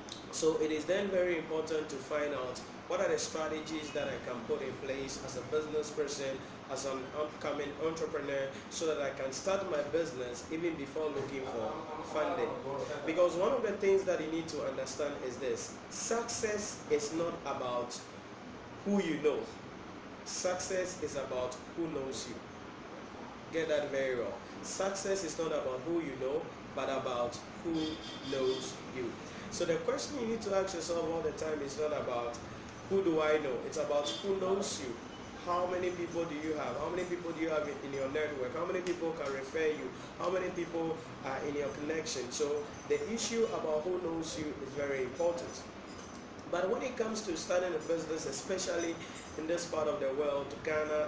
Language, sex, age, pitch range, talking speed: English, male, 30-49, 145-180 Hz, 185 wpm